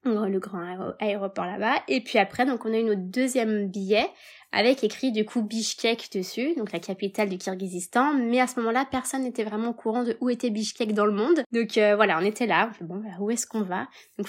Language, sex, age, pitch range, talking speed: French, female, 20-39, 205-255 Hz, 230 wpm